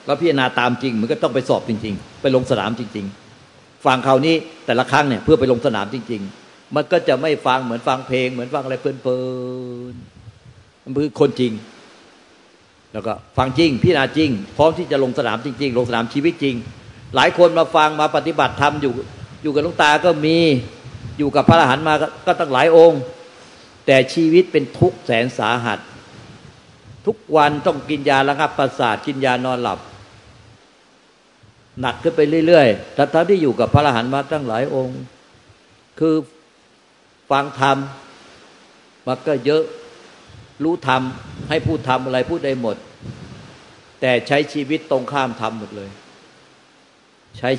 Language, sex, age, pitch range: Thai, male, 60-79, 120-150 Hz